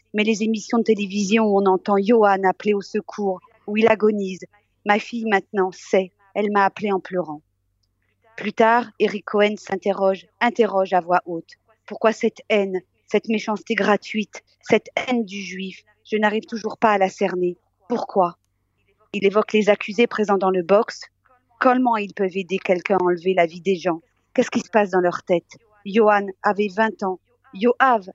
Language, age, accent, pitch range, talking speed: French, 40-59, French, 190-220 Hz, 185 wpm